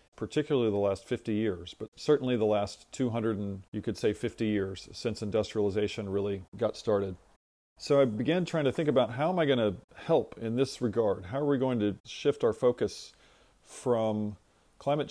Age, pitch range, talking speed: 40-59, 105-125 Hz, 185 wpm